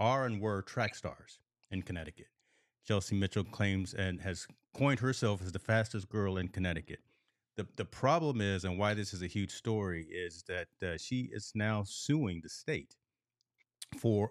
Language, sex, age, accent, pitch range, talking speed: English, male, 40-59, American, 95-110 Hz, 170 wpm